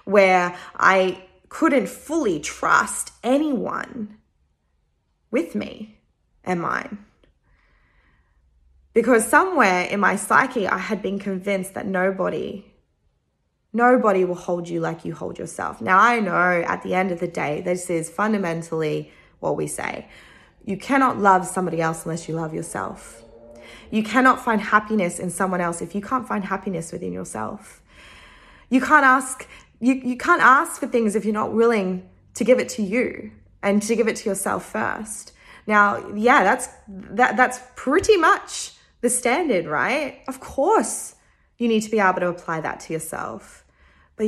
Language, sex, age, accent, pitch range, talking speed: English, female, 20-39, Australian, 175-230 Hz, 155 wpm